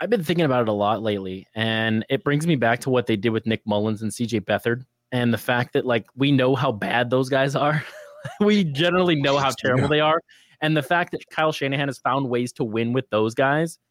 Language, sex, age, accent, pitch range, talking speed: English, male, 20-39, American, 125-160 Hz, 240 wpm